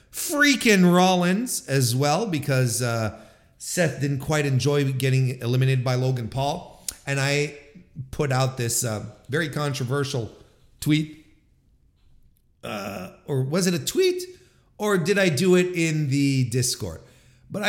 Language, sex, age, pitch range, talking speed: English, male, 40-59, 135-195 Hz, 130 wpm